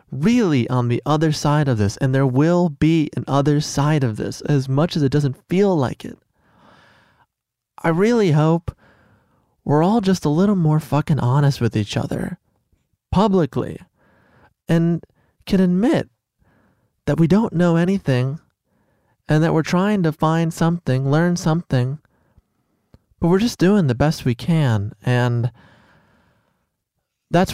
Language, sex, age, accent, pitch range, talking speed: English, male, 20-39, American, 120-160 Hz, 145 wpm